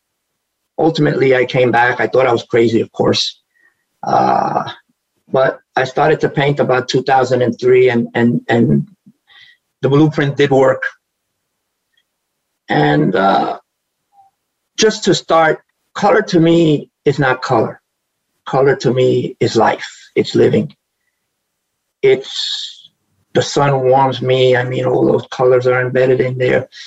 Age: 50-69